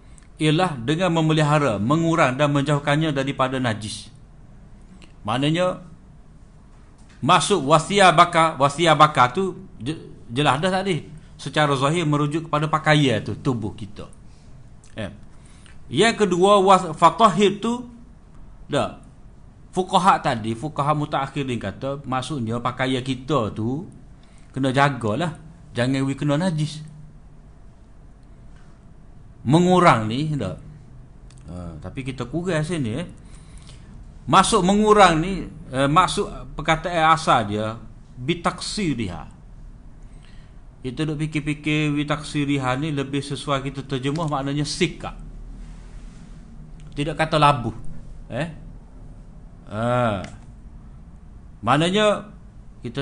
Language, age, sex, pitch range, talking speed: Malay, 50-69, male, 130-165 Hz, 95 wpm